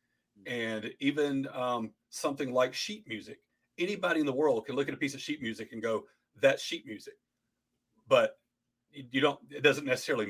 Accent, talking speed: American, 175 wpm